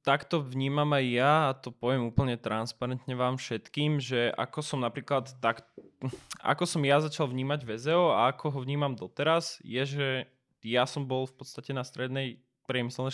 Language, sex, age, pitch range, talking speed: Slovak, male, 20-39, 125-145 Hz, 170 wpm